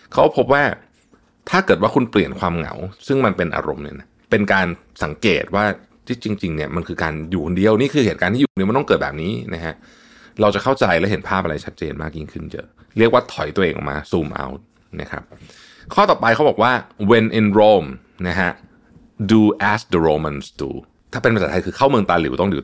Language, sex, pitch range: Thai, male, 90-115 Hz